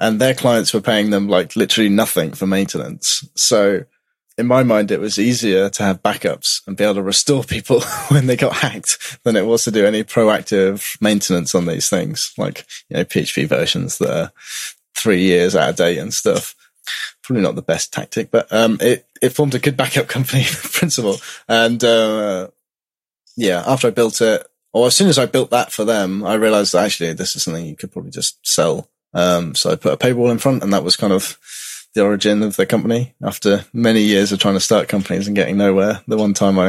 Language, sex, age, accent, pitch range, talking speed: English, male, 20-39, British, 95-120 Hz, 215 wpm